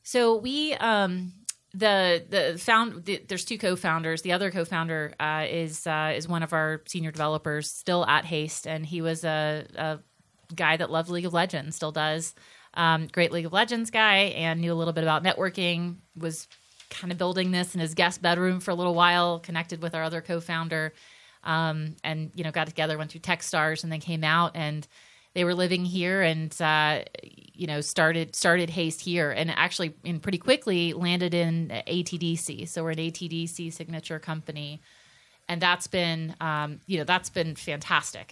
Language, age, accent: English, 30-49, American